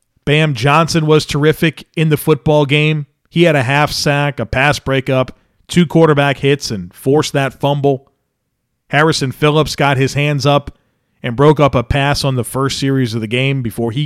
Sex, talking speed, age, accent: male, 185 wpm, 40-59, American